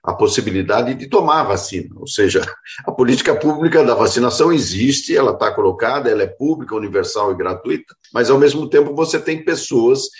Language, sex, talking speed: Portuguese, male, 175 wpm